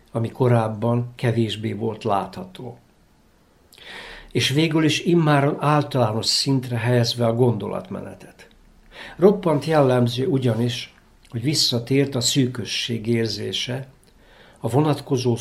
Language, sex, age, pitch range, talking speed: Hungarian, male, 60-79, 115-135 Hz, 95 wpm